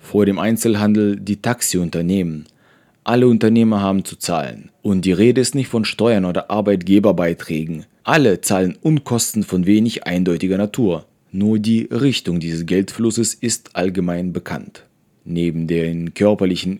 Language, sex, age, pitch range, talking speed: German, male, 30-49, 95-110 Hz, 130 wpm